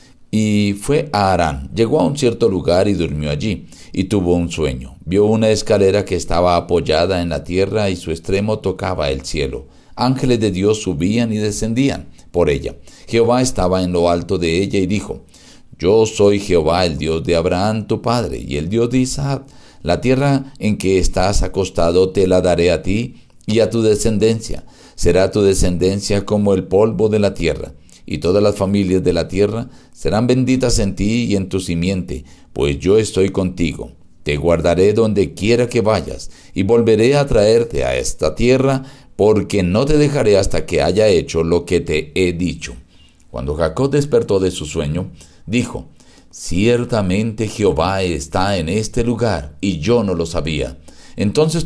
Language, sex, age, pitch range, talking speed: Spanish, male, 50-69, 90-115 Hz, 175 wpm